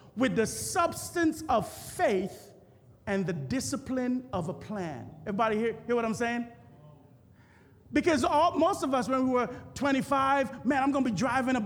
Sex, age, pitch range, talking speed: male, 30-49, 210-275 Hz, 165 wpm